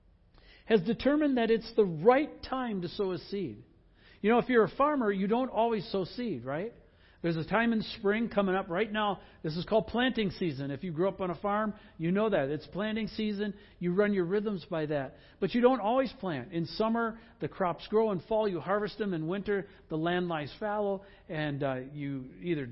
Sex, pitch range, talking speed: male, 165-230 Hz, 215 wpm